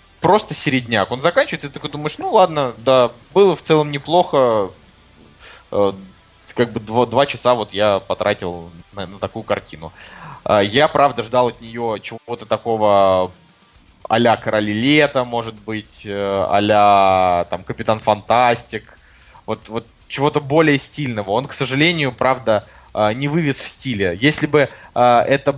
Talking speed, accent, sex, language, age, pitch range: 140 wpm, native, male, Russian, 20-39, 115-145 Hz